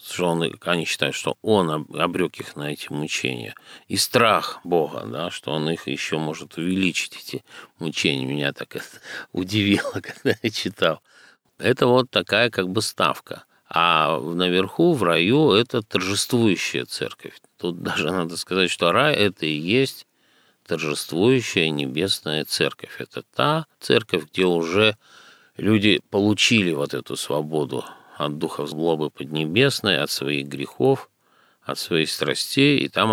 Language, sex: Russian, male